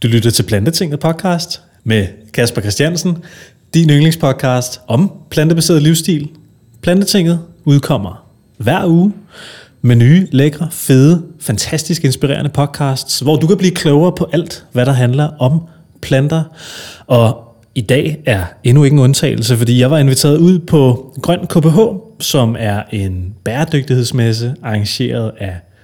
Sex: male